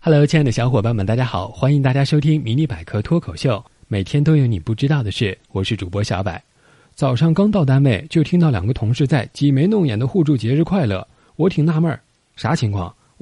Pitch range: 115-170 Hz